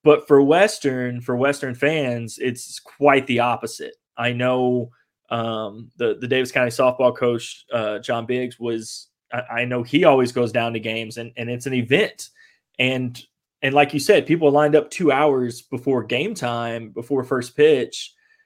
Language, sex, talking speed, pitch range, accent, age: English, male, 170 wpm, 120-160 Hz, American, 20-39